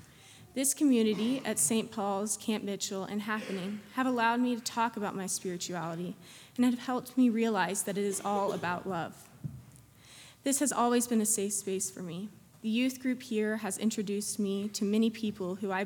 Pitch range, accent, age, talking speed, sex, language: 185-220 Hz, American, 20-39, 185 wpm, female, English